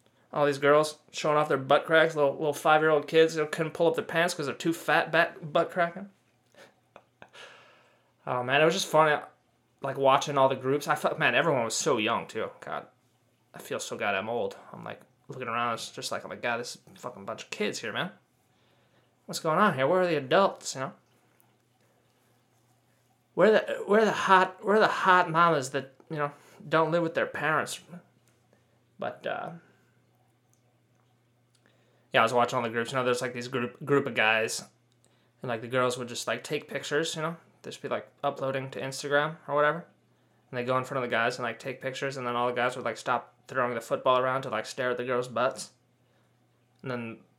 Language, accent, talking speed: English, American, 220 wpm